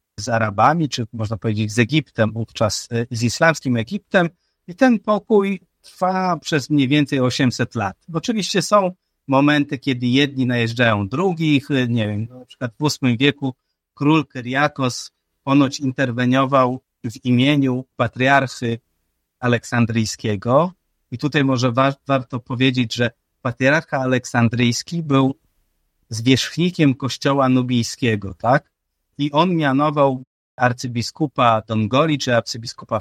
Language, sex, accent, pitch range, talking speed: Polish, male, native, 115-145 Hz, 115 wpm